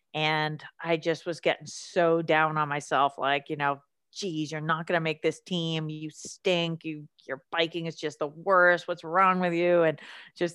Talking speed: 200 wpm